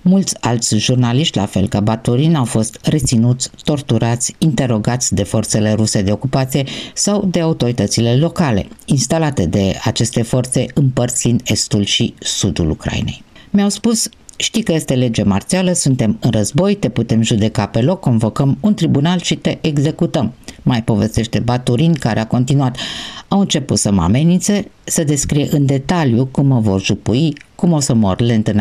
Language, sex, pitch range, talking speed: Romanian, female, 115-160 Hz, 160 wpm